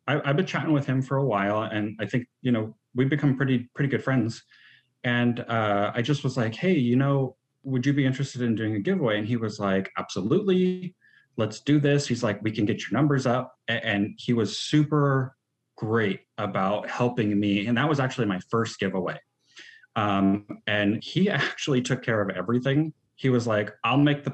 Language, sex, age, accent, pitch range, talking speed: English, male, 30-49, American, 100-135 Hz, 200 wpm